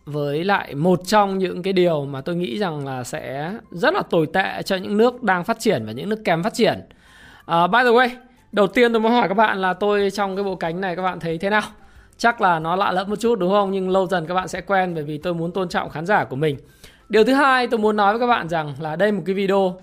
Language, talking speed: Vietnamese, 280 wpm